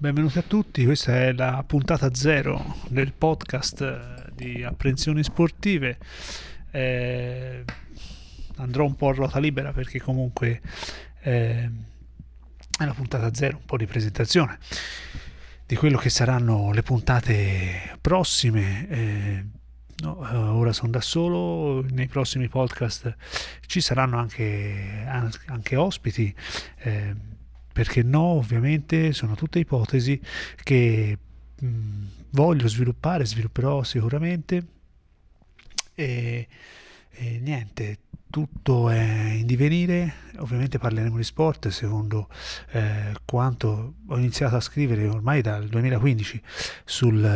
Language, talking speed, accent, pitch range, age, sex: Italian, 110 wpm, native, 110-140 Hz, 30-49, male